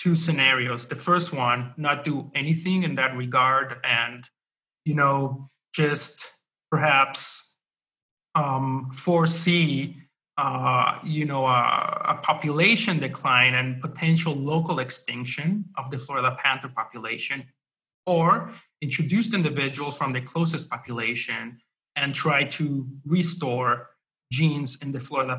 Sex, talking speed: male, 115 wpm